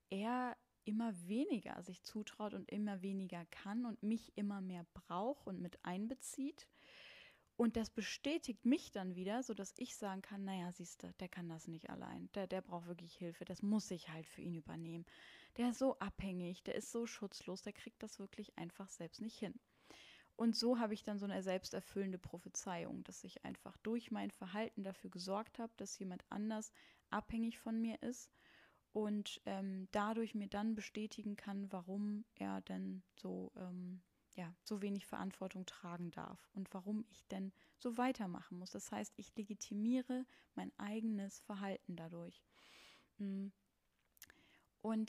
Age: 10-29